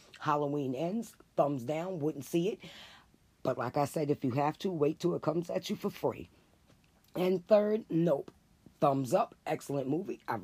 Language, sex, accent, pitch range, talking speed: English, female, American, 130-160 Hz, 180 wpm